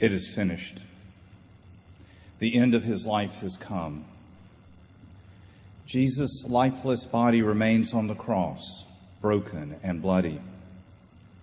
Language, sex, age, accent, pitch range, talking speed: English, male, 50-69, American, 95-120 Hz, 105 wpm